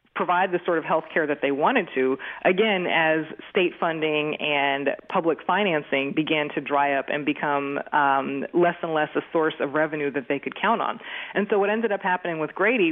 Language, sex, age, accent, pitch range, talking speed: English, female, 20-39, American, 145-175 Hz, 205 wpm